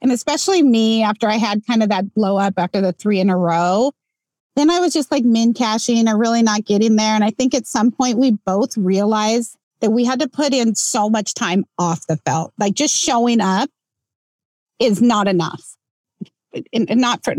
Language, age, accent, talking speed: English, 30-49, American, 205 wpm